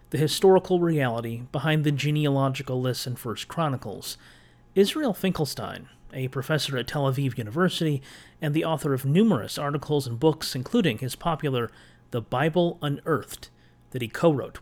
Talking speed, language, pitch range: 145 wpm, English, 120-155 Hz